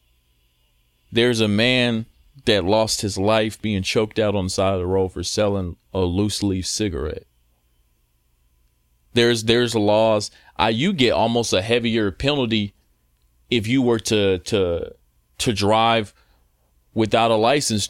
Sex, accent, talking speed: male, American, 140 wpm